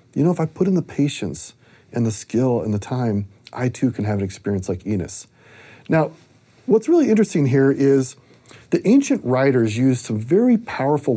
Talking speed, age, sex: 190 wpm, 40-59, male